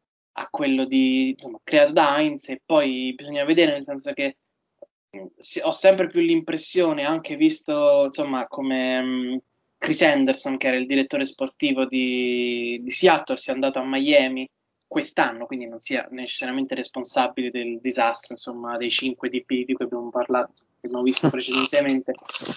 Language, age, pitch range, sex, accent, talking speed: Italian, 20-39, 130-180 Hz, male, native, 155 wpm